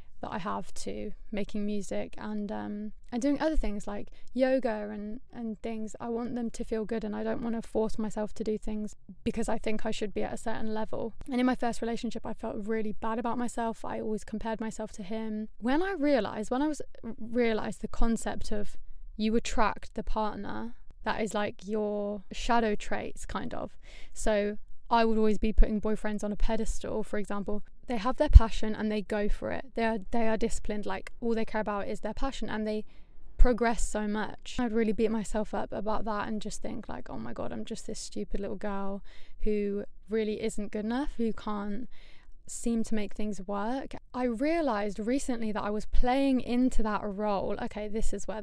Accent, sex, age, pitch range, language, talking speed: British, female, 20-39, 210-230 Hz, English, 205 wpm